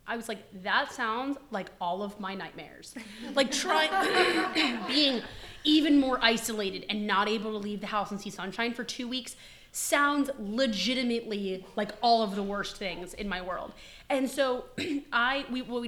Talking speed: 165 wpm